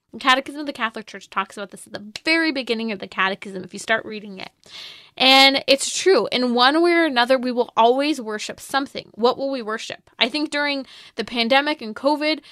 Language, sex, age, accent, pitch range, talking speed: English, female, 20-39, American, 215-275 Hz, 210 wpm